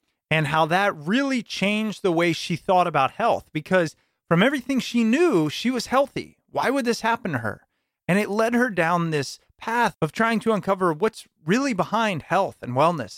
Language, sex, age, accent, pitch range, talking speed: English, male, 30-49, American, 155-225 Hz, 190 wpm